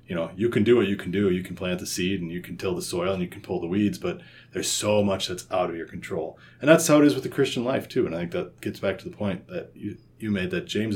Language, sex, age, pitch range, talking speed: English, male, 30-49, 90-105 Hz, 330 wpm